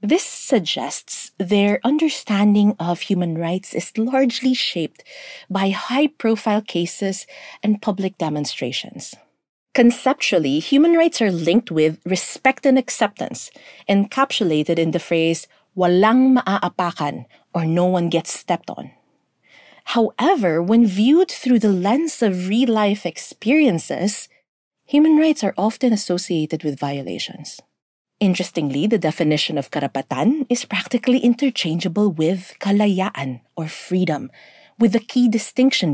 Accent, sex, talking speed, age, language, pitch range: native, female, 115 wpm, 40-59, Filipino, 170-240 Hz